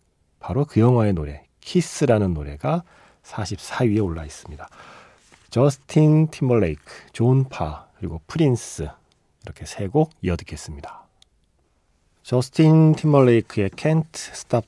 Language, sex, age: Korean, male, 40-59